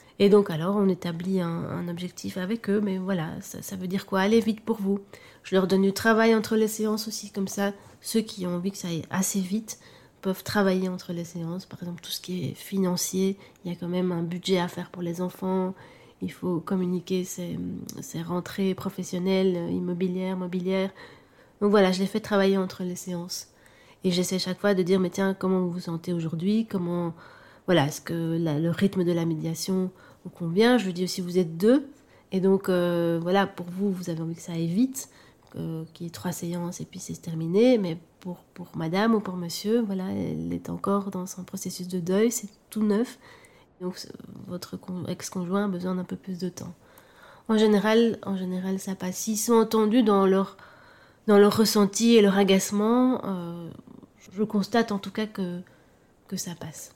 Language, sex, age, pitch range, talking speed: French, female, 30-49, 175-205 Hz, 205 wpm